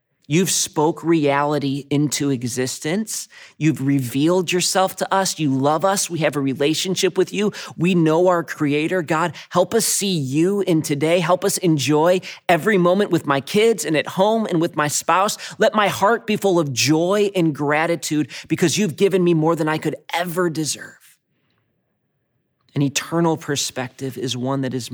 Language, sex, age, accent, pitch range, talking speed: English, male, 30-49, American, 130-160 Hz, 170 wpm